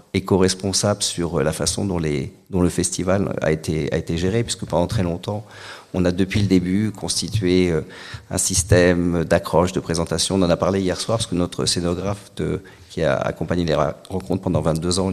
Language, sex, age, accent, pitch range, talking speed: French, male, 50-69, French, 90-110 Hz, 190 wpm